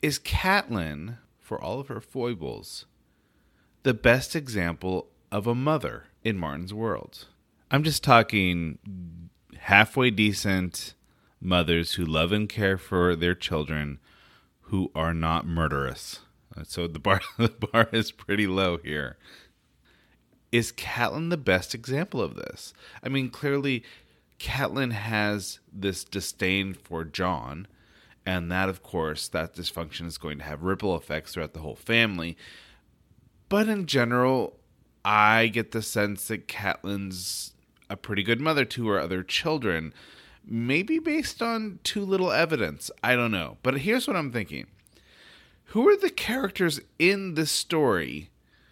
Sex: male